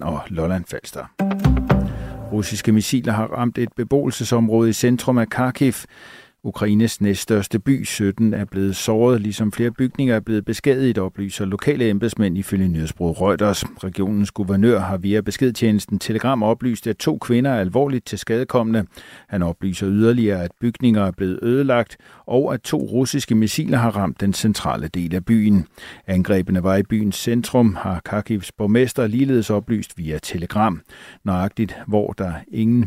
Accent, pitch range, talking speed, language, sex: native, 100-120 Hz, 145 wpm, Danish, male